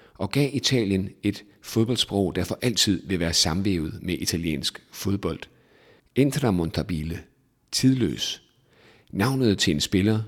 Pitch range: 85-105 Hz